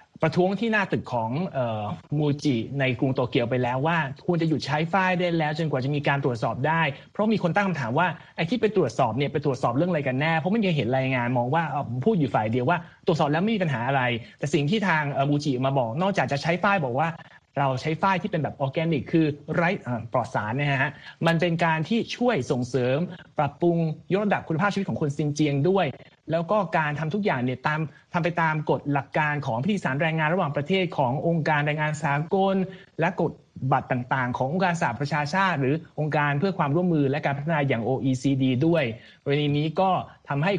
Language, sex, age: Thai, male, 20-39